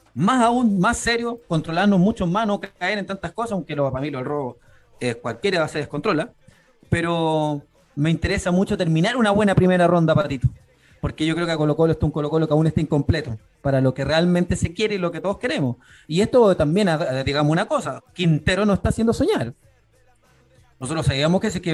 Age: 30-49